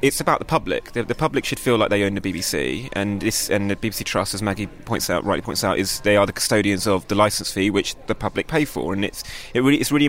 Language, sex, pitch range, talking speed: English, male, 100-120 Hz, 275 wpm